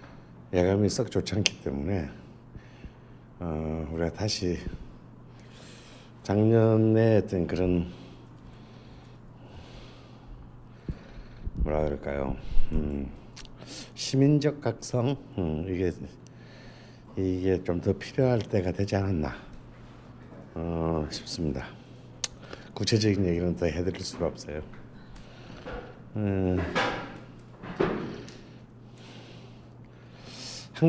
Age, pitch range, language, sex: 60-79, 85-125 Hz, Korean, male